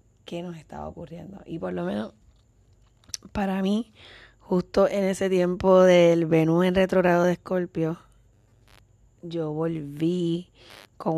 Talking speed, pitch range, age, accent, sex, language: 125 wpm, 115-170 Hz, 20-39, American, female, Spanish